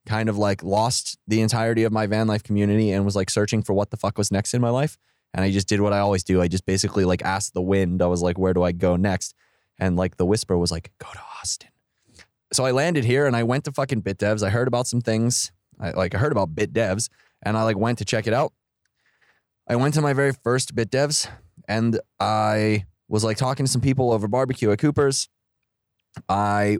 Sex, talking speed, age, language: male, 235 wpm, 20-39, English